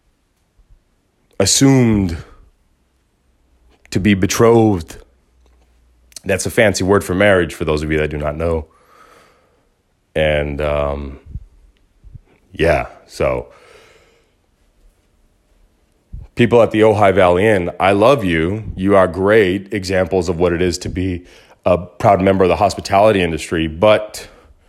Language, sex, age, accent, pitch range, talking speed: English, male, 30-49, American, 80-120 Hz, 120 wpm